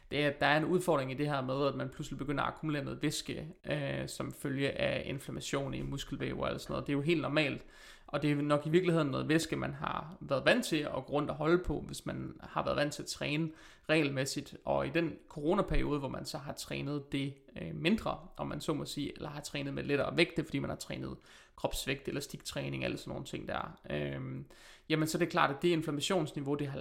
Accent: native